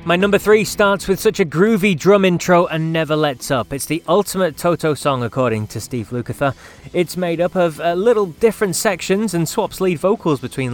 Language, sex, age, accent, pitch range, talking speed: English, male, 20-39, British, 115-170 Hz, 200 wpm